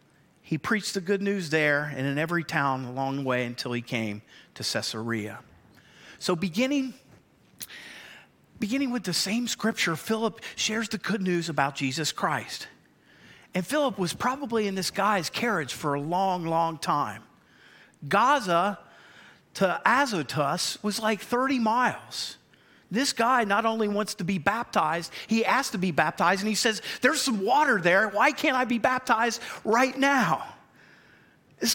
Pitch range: 160-240 Hz